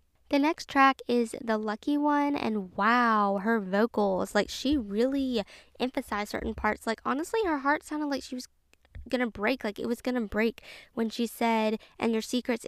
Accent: American